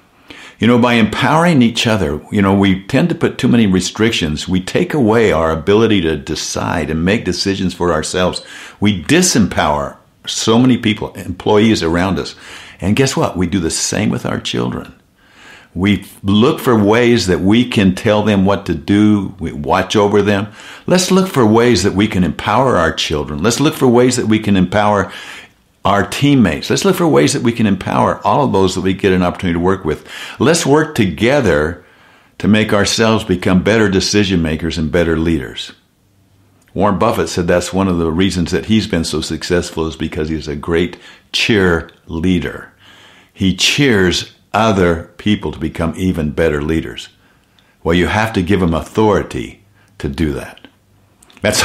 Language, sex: English, male